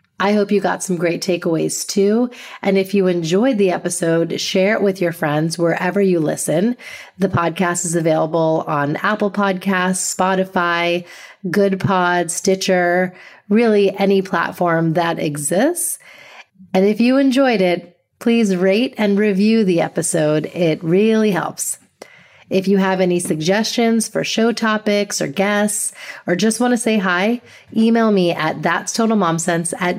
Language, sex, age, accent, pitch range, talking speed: English, female, 30-49, American, 175-220 Hz, 145 wpm